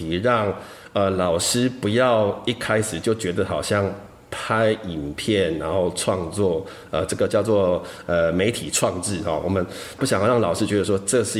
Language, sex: Chinese, male